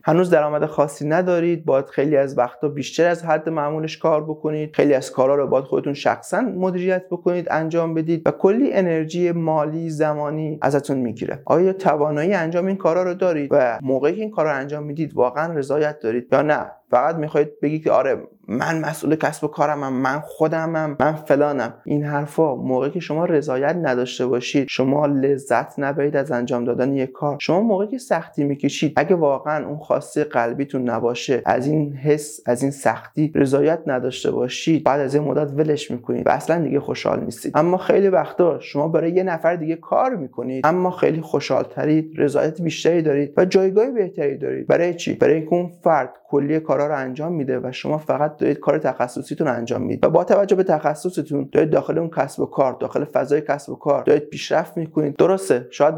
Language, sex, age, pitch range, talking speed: Persian, male, 30-49, 140-165 Hz, 190 wpm